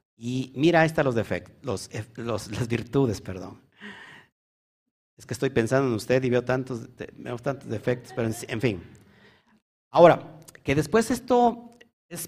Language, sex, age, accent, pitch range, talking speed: Spanish, male, 50-69, Mexican, 110-150 Hz, 160 wpm